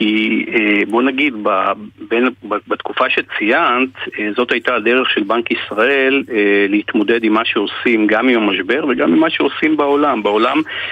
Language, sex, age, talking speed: Hebrew, male, 50-69, 135 wpm